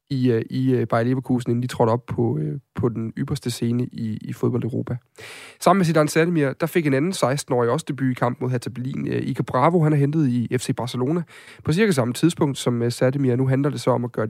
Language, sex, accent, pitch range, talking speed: Danish, male, native, 125-165 Hz, 220 wpm